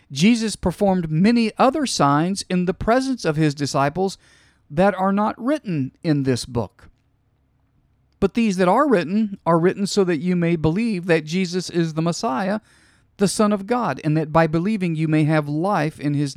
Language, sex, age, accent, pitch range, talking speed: English, male, 50-69, American, 130-195 Hz, 180 wpm